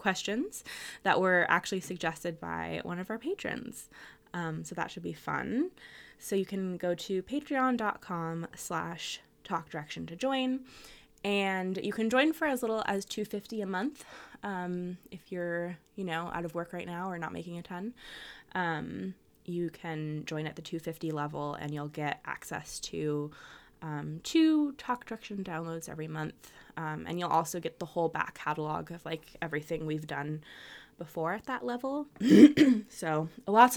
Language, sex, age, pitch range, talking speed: English, female, 20-39, 165-230 Hz, 165 wpm